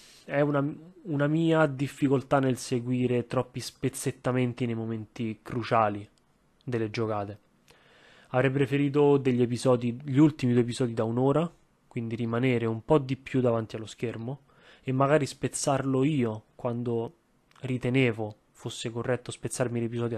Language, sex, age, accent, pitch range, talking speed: Italian, male, 20-39, native, 120-145 Hz, 130 wpm